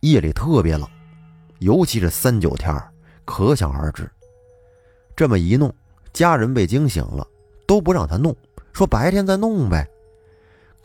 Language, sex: Chinese, male